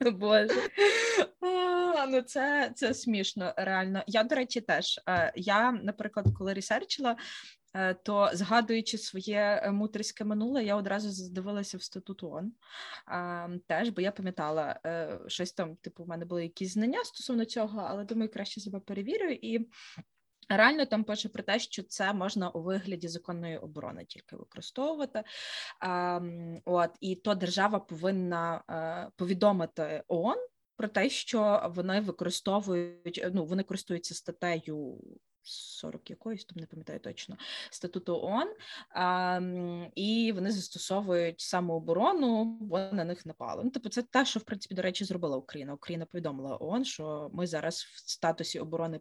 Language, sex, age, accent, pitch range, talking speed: Ukrainian, female, 20-39, native, 175-225 Hz, 140 wpm